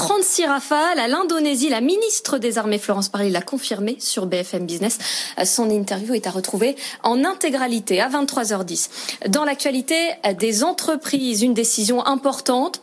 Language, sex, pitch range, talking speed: French, female, 210-295 Hz, 145 wpm